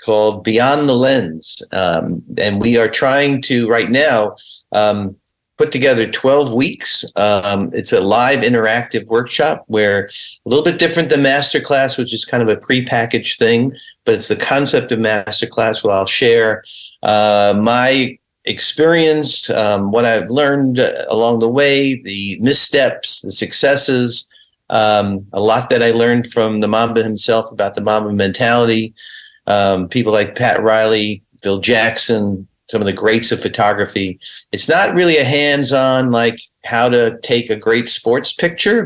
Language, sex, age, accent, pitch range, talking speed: English, male, 50-69, American, 105-130 Hz, 155 wpm